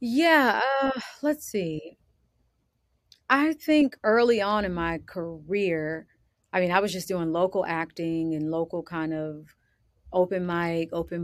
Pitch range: 160-205 Hz